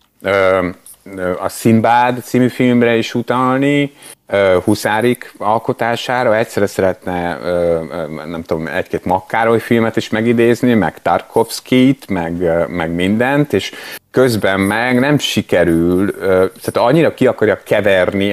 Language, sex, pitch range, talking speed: Hungarian, male, 90-120 Hz, 100 wpm